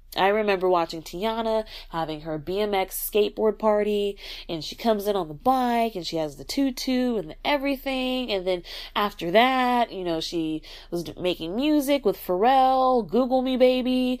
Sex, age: female, 20-39